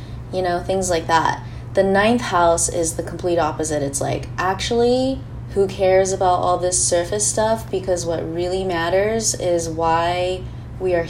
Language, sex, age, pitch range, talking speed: English, female, 20-39, 150-185 Hz, 160 wpm